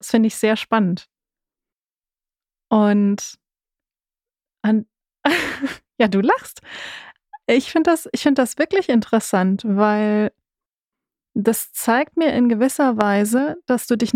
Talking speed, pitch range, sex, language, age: 115 wpm, 195-255 Hz, female, German, 30-49